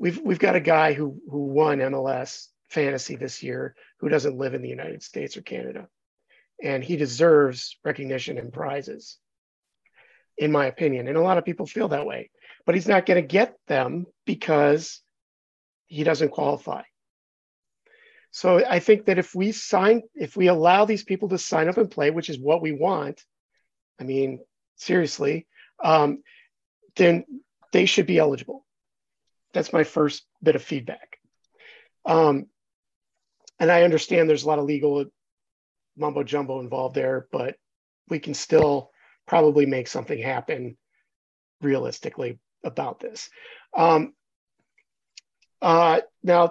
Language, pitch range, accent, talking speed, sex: English, 145-185 Hz, American, 145 wpm, male